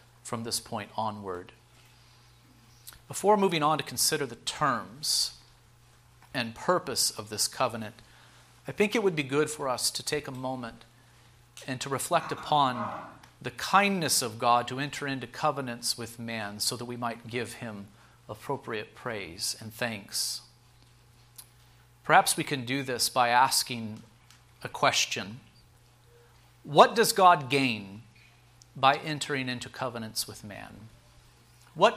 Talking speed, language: 135 wpm, English